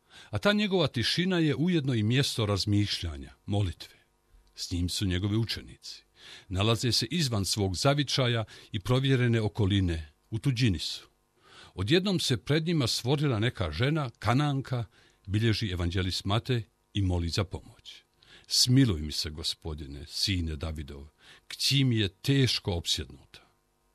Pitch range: 95-130 Hz